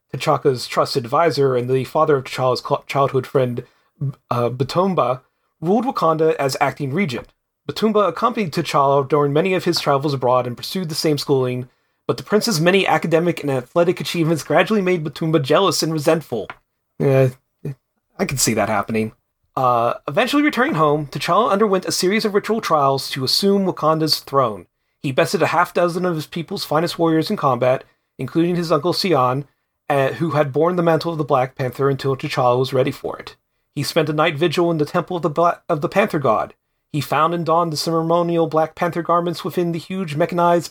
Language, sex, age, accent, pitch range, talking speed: English, male, 30-49, American, 140-175 Hz, 185 wpm